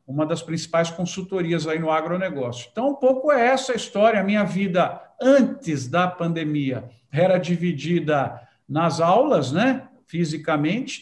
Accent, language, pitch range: Brazilian, Portuguese, 150-210 Hz